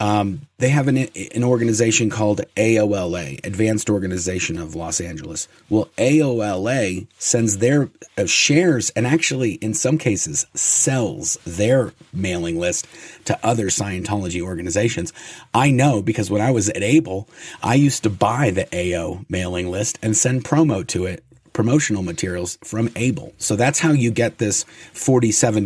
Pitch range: 95-130 Hz